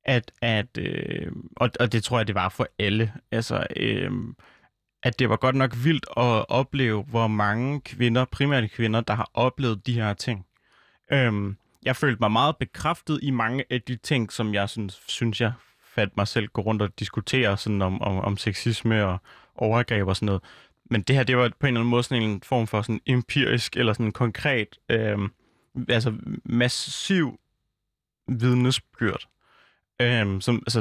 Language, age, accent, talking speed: Danish, 30-49, native, 180 wpm